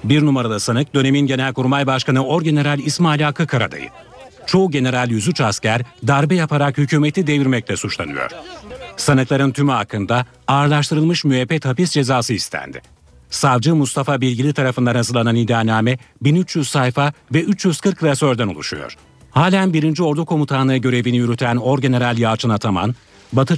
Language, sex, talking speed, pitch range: Turkish, male, 125 wpm, 120-150 Hz